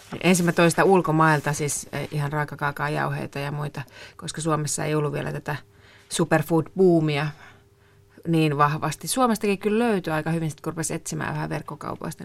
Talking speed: 130 wpm